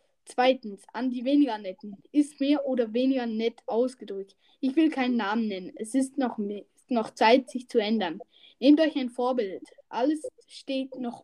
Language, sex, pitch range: German, female, 260-315 Hz